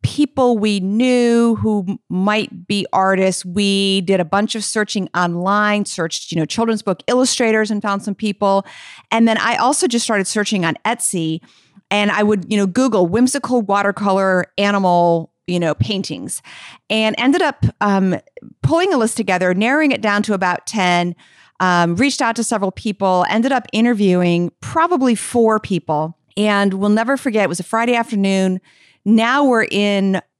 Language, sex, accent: English, female, American